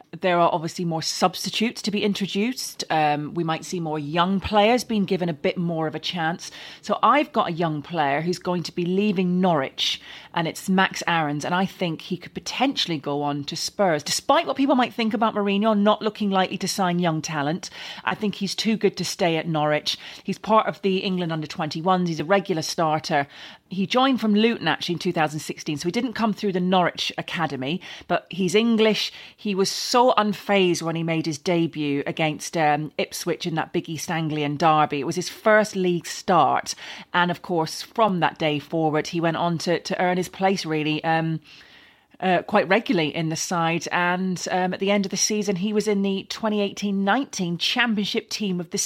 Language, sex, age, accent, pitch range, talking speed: English, female, 40-59, British, 160-205 Hz, 200 wpm